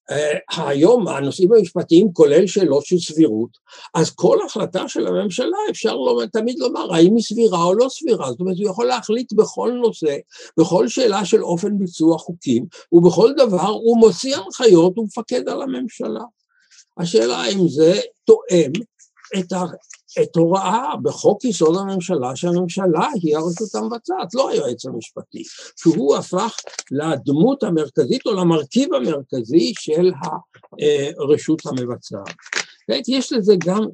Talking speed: 135 wpm